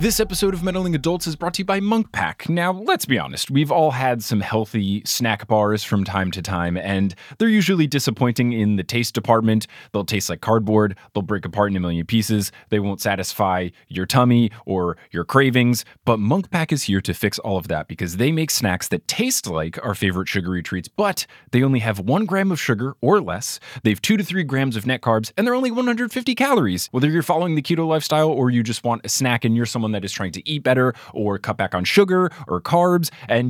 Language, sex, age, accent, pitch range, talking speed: English, male, 20-39, American, 105-155 Hz, 230 wpm